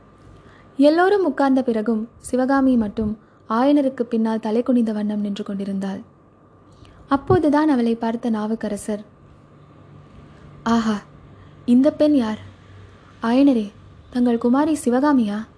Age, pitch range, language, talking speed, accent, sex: 20-39, 215-260 Hz, Tamil, 90 wpm, native, female